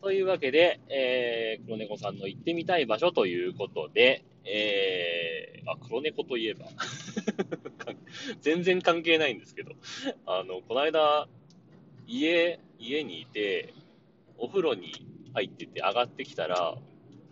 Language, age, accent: Japanese, 30-49, native